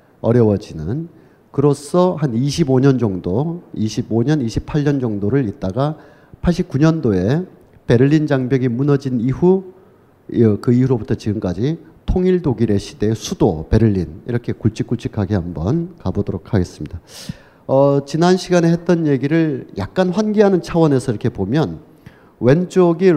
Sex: male